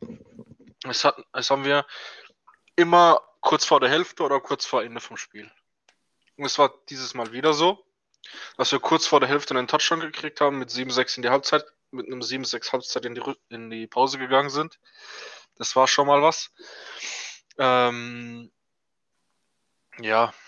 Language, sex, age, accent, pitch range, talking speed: German, male, 20-39, German, 125-150 Hz, 165 wpm